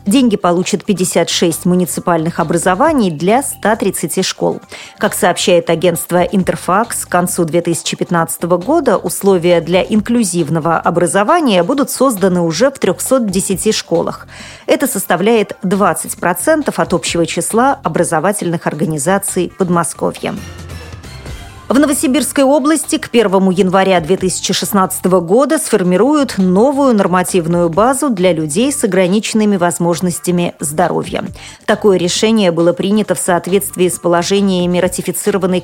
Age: 40-59